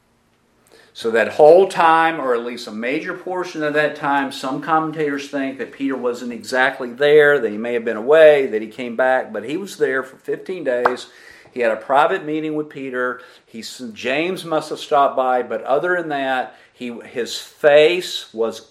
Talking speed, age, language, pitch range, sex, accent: 190 wpm, 50-69, English, 120-160 Hz, male, American